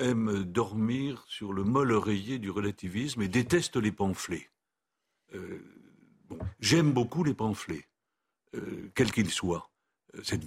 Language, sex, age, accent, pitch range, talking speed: French, male, 60-79, French, 100-135 Hz, 130 wpm